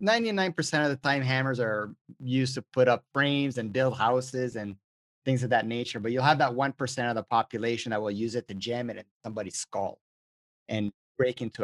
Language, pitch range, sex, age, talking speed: English, 120-150 Hz, male, 30-49, 200 wpm